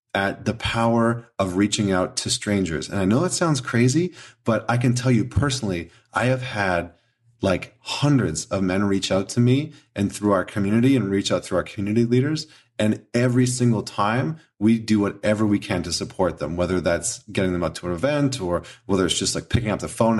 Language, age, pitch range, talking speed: English, 30-49, 100-125 Hz, 210 wpm